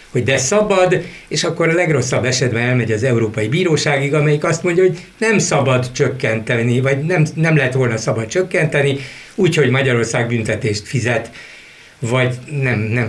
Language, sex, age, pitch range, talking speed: Hungarian, male, 60-79, 115-150 Hz, 150 wpm